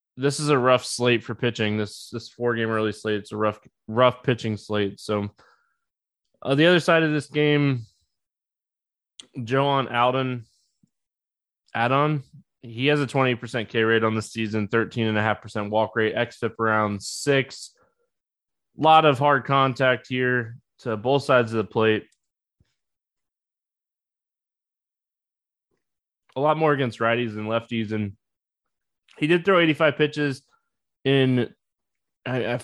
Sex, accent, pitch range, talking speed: male, American, 110-135 Hz, 145 wpm